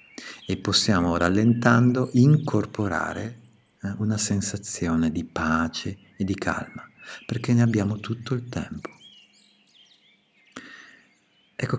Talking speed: 95 wpm